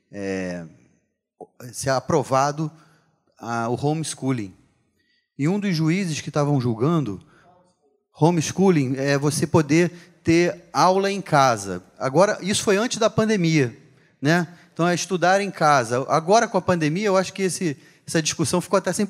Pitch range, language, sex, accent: 140-180 Hz, Portuguese, male, Brazilian